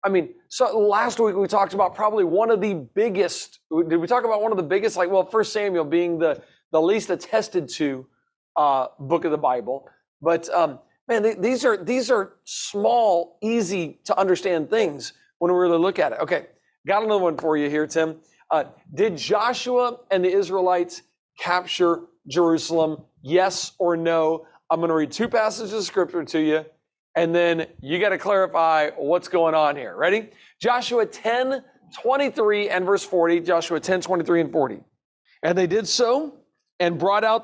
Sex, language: male, English